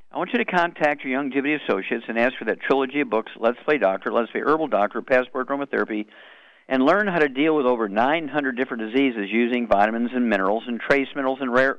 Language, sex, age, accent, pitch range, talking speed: English, male, 50-69, American, 120-150 Hz, 225 wpm